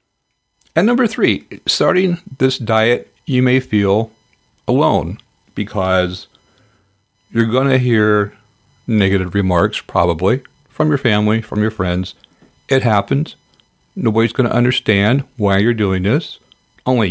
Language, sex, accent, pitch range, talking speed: English, male, American, 95-115 Hz, 125 wpm